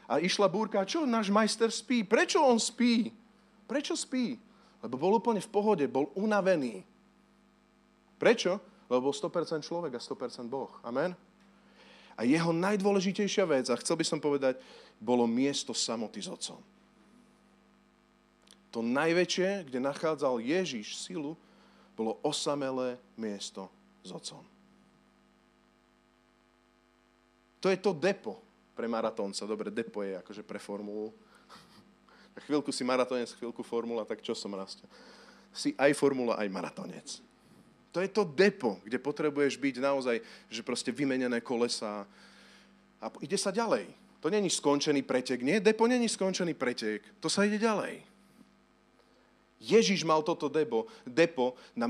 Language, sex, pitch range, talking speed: Slovak, male, 130-215 Hz, 135 wpm